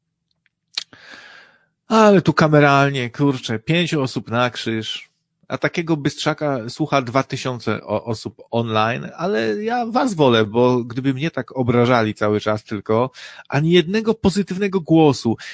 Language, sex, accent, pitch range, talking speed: Polish, male, native, 120-180 Hz, 125 wpm